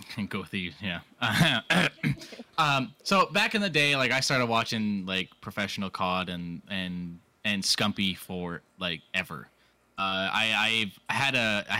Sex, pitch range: male, 95-130 Hz